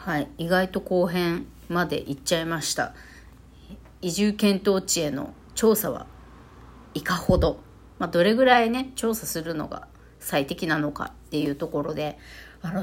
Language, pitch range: Japanese, 175-265 Hz